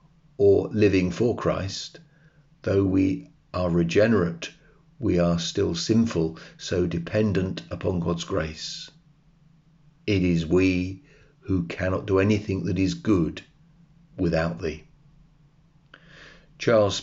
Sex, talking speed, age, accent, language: male, 105 wpm, 50-69, British, English